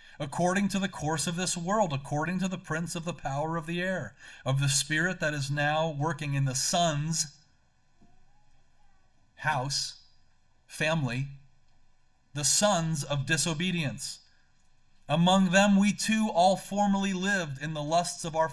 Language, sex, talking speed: English, male, 145 wpm